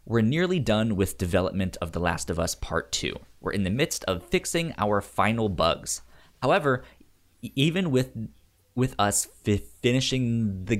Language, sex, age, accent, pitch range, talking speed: English, male, 20-39, American, 95-125 Hz, 160 wpm